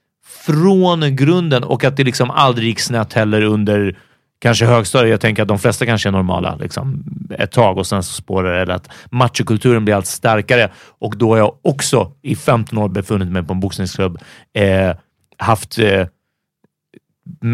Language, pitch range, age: Swedish, 100-130 Hz, 30-49